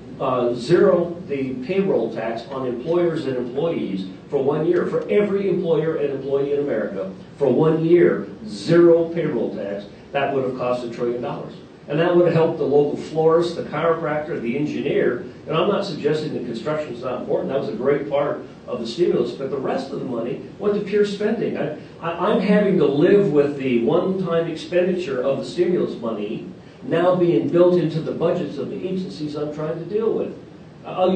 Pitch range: 140-185 Hz